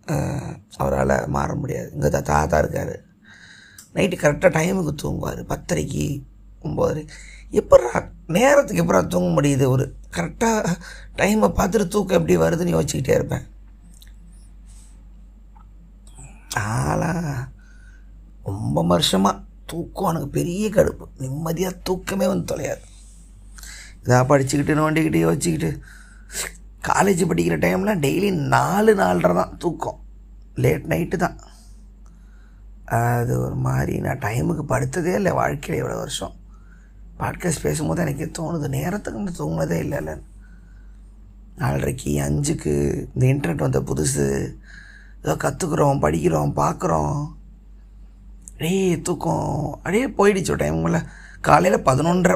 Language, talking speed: Tamil, 100 wpm